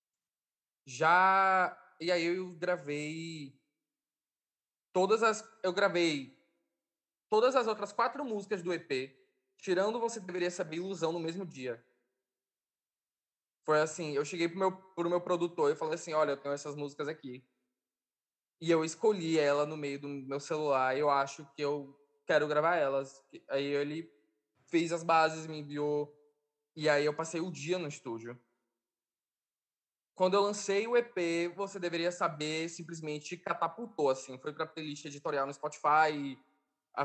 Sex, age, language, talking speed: male, 20-39, Portuguese, 150 wpm